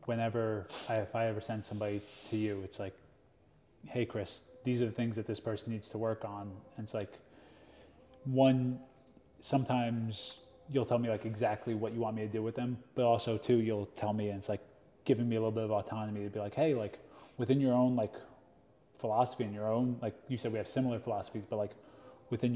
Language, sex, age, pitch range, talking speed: English, male, 20-39, 110-125 Hz, 215 wpm